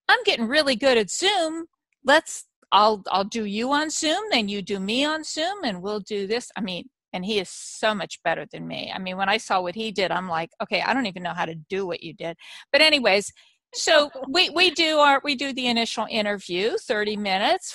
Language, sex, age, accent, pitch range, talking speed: English, female, 50-69, American, 200-270 Hz, 230 wpm